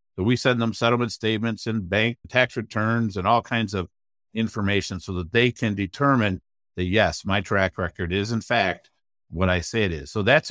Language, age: English, 50-69